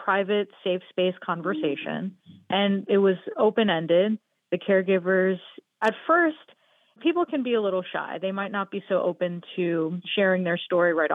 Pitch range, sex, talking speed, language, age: 175-210 Hz, female, 155 wpm, English, 30-49